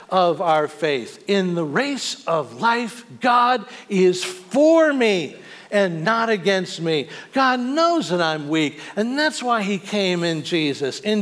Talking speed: 155 wpm